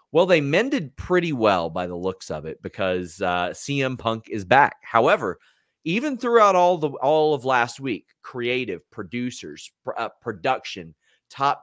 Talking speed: 160 wpm